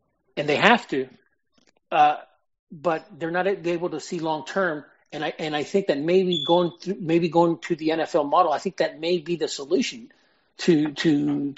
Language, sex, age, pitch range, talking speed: English, male, 40-59, 150-180 Hz, 185 wpm